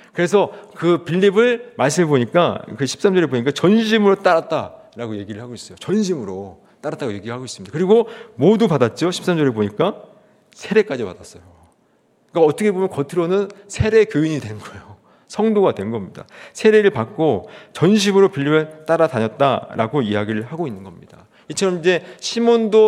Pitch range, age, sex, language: 120-195 Hz, 40-59, male, Korean